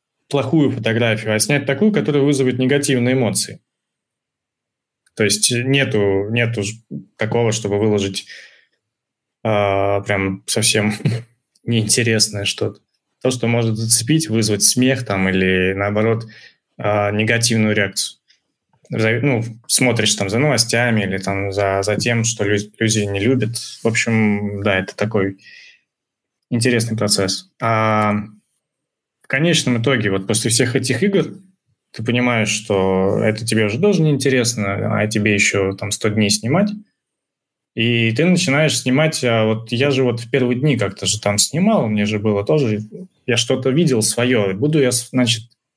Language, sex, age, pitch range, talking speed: Russian, male, 20-39, 105-130 Hz, 135 wpm